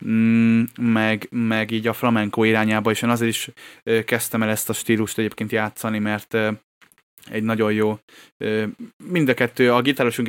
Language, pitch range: Hungarian, 110-120 Hz